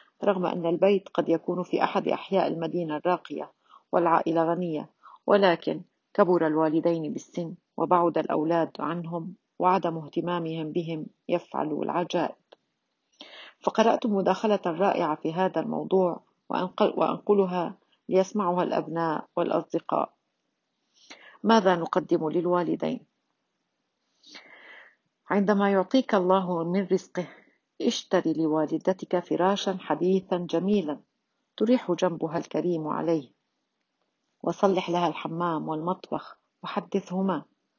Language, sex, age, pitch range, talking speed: Arabic, female, 40-59, 165-195 Hz, 90 wpm